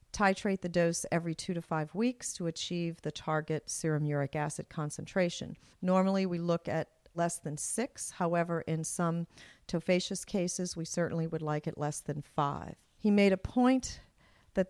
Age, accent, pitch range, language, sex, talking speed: 50-69, American, 170-195 Hz, English, female, 165 wpm